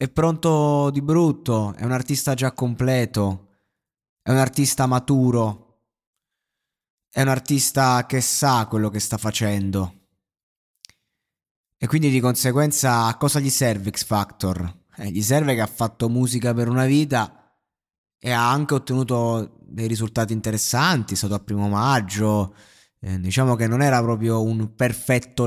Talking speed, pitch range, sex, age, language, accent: 140 wpm, 105-130 Hz, male, 20-39, Italian, native